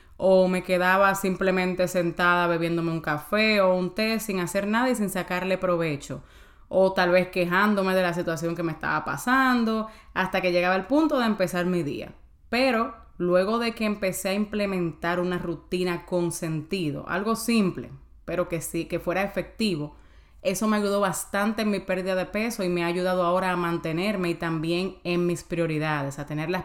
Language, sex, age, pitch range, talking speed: Spanish, female, 20-39, 170-200 Hz, 180 wpm